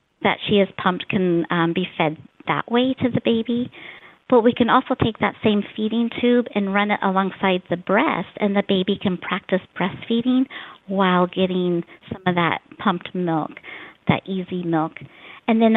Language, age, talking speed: English, 50-69, 175 wpm